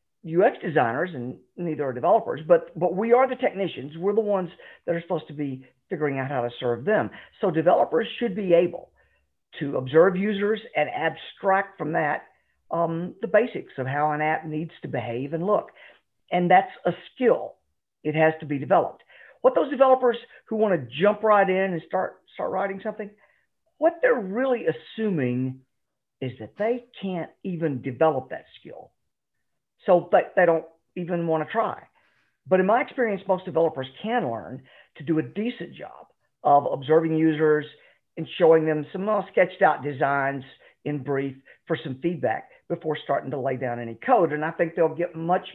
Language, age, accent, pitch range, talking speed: English, 50-69, American, 150-200 Hz, 180 wpm